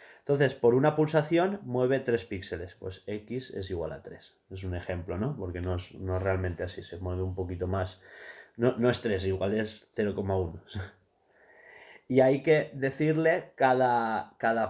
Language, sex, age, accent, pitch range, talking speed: Spanish, male, 20-39, Spanish, 95-130 Hz, 170 wpm